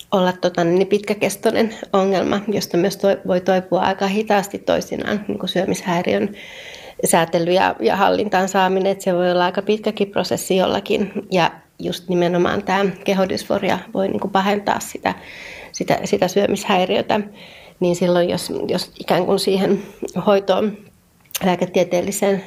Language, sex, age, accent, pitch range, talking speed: Finnish, female, 30-49, native, 180-205 Hz, 130 wpm